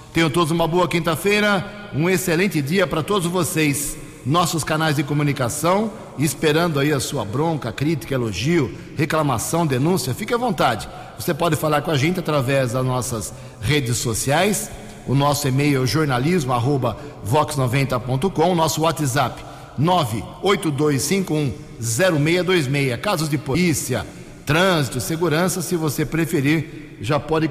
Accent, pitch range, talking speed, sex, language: Brazilian, 140-170 Hz, 120 wpm, male, Portuguese